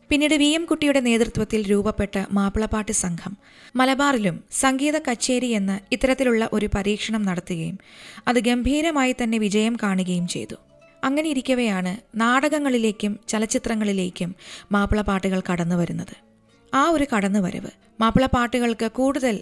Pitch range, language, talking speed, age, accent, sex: 195-255 Hz, Malayalam, 100 wpm, 20-39, native, female